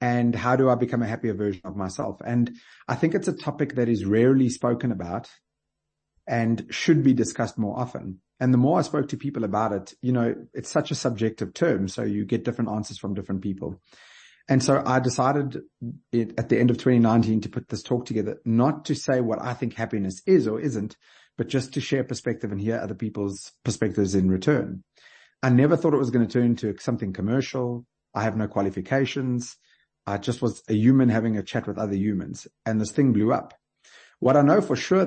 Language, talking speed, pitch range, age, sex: English, 210 wpm, 105-130 Hz, 30-49, male